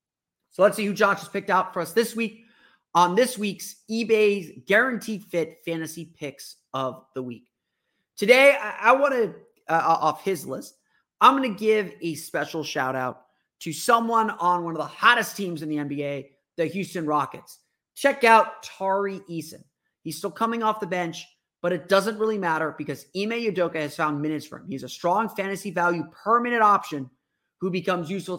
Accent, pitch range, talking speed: American, 150-200 Hz, 185 wpm